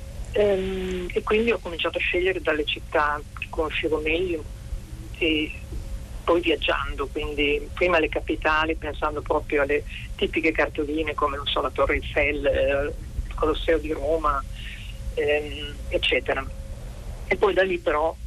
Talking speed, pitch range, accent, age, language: 135 wpm, 150-180 Hz, native, 40-59, Italian